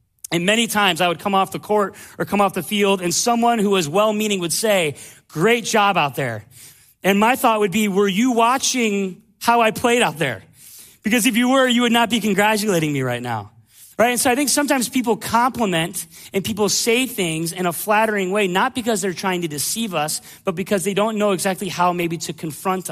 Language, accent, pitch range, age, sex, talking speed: English, American, 170-220 Hz, 30-49, male, 215 wpm